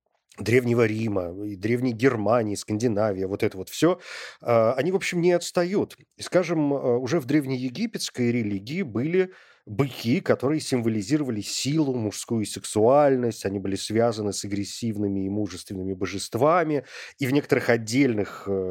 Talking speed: 125 wpm